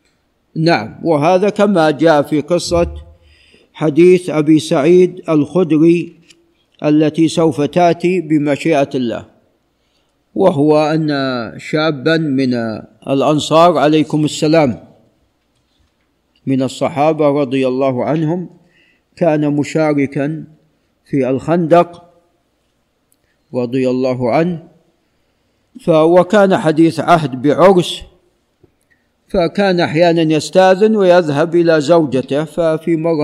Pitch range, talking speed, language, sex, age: 140-170 Hz, 85 wpm, Arabic, male, 50-69